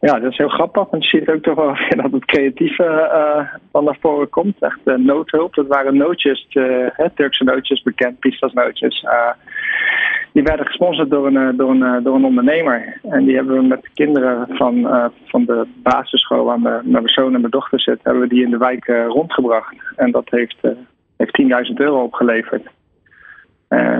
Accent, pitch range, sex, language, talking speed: Dutch, 125-155 Hz, male, Dutch, 205 wpm